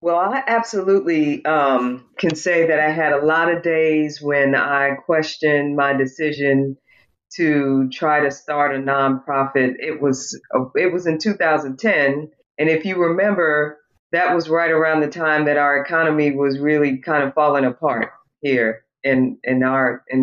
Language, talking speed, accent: English, 165 wpm, American